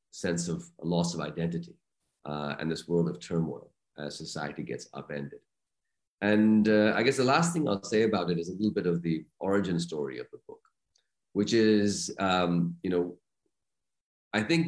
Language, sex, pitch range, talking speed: English, male, 80-100 Hz, 185 wpm